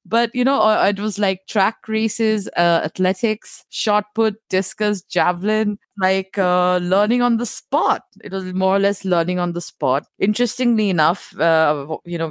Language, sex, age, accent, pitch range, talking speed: English, female, 20-39, Indian, 145-195 Hz, 165 wpm